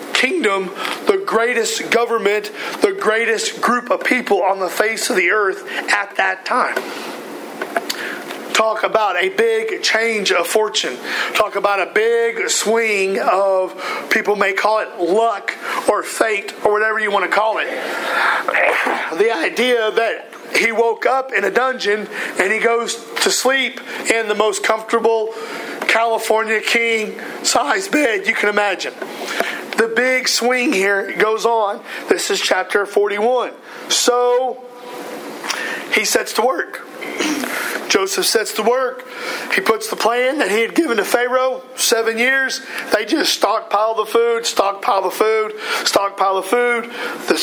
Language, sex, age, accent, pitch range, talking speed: English, male, 40-59, American, 215-275 Hz, 145 wpm